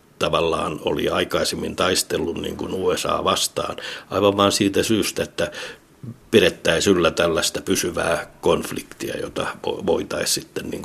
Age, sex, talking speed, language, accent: 60-79, male, 110 wpm, Finnish, native